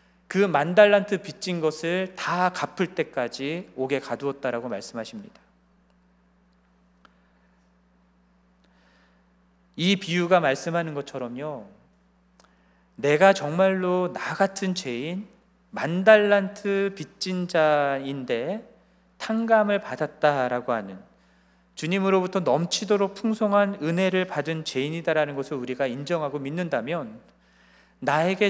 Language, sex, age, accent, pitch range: Korean, male, 40-59, native, 120-185 Hz